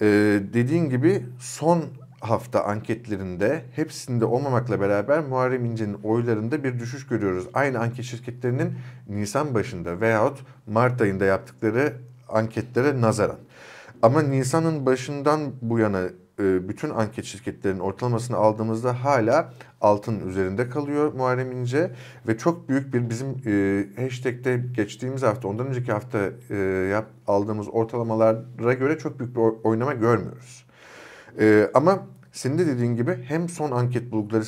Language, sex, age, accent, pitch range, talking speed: Turkish, male, 50-69, native, 105-125 Hz, 120 wpm